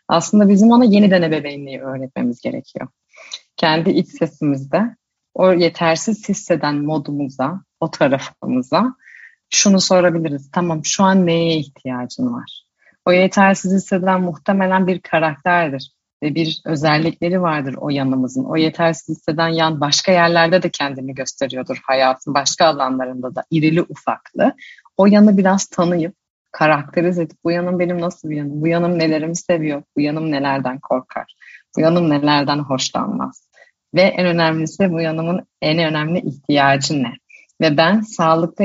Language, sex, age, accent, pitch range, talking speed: Turkish, female, 30-49, native, 150-185 Hz, 135 wpm